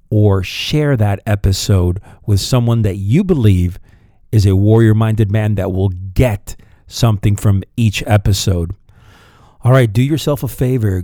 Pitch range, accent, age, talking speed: 100-125 Hz, American, 50-69, 140 wpm